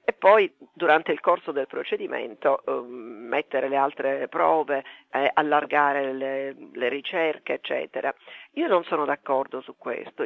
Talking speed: 135 wpm